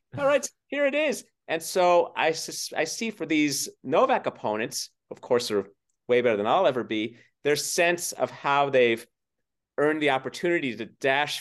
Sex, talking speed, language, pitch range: male, 175 wpm, English, 130-170 Hz